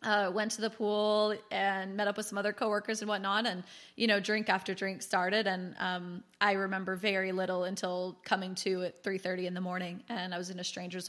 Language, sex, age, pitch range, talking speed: English, female, 20-39, 185-210 Hz, 220 wpm